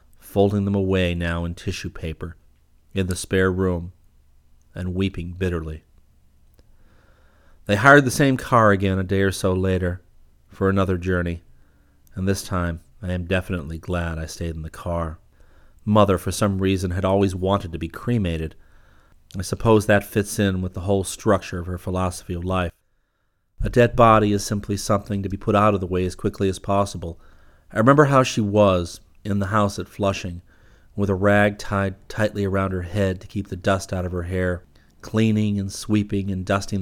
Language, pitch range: English, 85-105 Hz